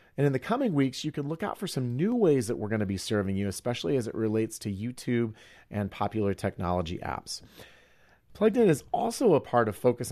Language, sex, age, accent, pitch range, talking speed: English, male, 40-59, American, 105-145 Hz, 225 wpm